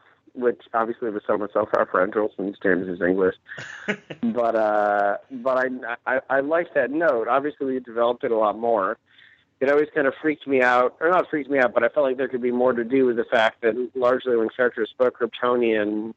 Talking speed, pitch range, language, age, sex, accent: 210 wpm, 115-150 Hz, English, 40-59, male, American